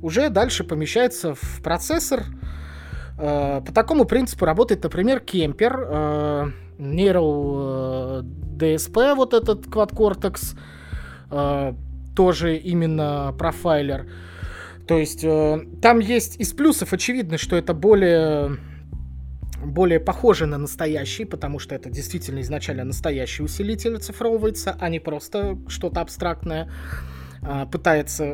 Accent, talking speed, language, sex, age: native, 100 wpm, Russian, male, 20-39